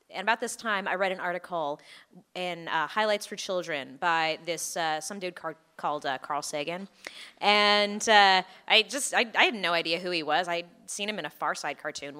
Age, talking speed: 20-39, 210 wpm